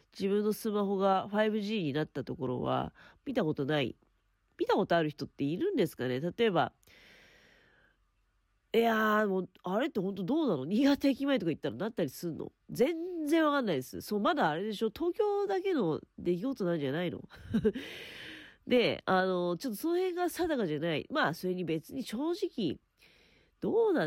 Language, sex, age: Japanese, female, 40-59